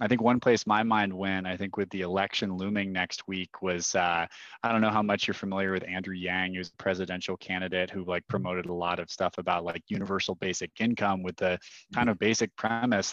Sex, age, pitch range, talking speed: male, 20-39, 90-105 Hz, 220 wpm